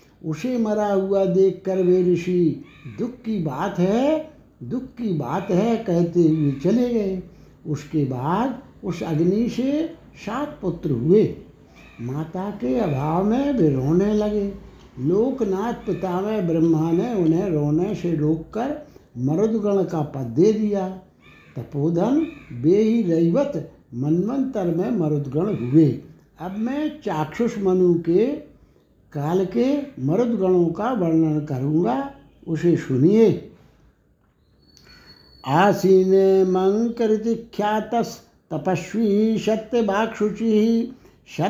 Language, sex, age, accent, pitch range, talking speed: Hindi, male, 60-79, native, 160-215 Hz, 100 wpm